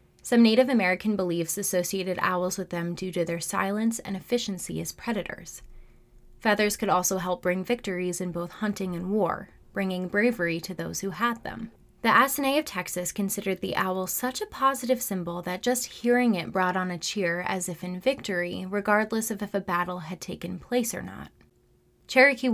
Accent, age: American, 20-39